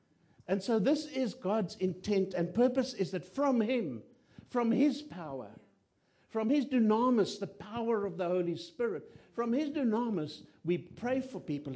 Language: English